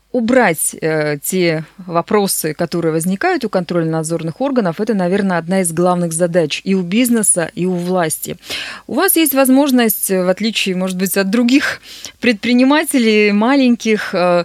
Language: Russian